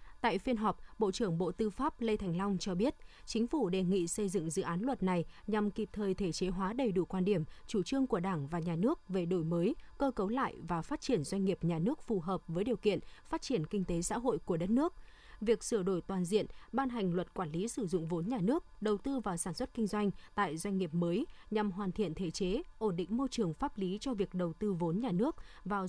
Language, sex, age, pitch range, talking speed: Vietnamese, female, 20-39, 185-230 Hz, 260 wpm